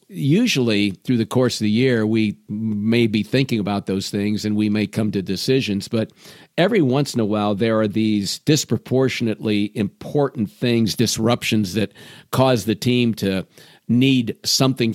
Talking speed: 160 wpm